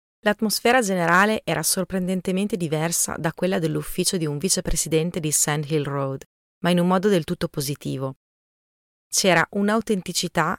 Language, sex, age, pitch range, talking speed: Italian, female, 30-49, 145-185 Hz, 135 wpm